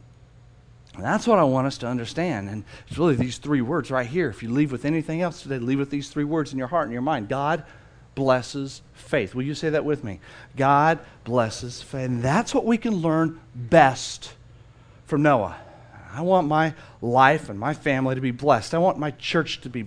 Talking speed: 215 wpm